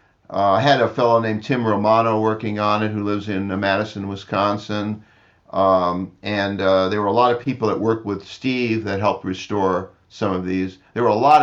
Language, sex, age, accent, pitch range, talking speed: English, male, 50-69, American, 100-120 Hz, 210 wpm